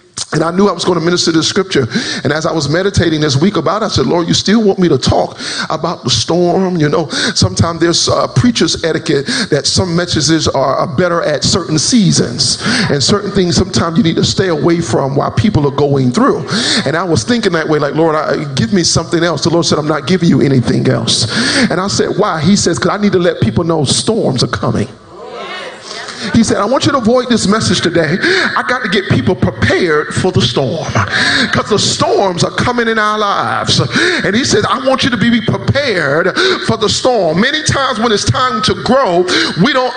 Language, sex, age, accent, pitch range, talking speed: English, male, 40-59, American, 165-230 Hz, 220 wpm